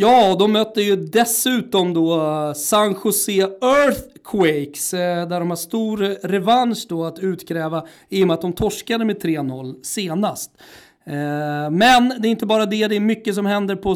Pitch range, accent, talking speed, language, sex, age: 175-210 Hz, native, 165 wpm, Swedish, male, 40-59